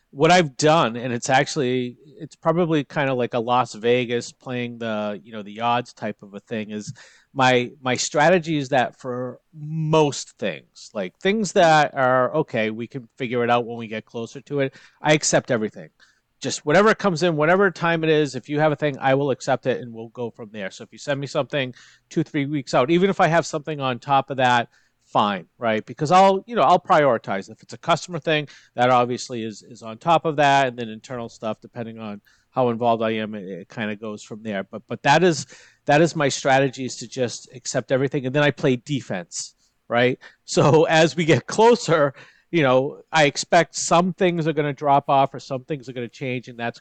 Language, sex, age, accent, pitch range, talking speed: English, male, 40-59, American, 120-155 Hz, 225 wpm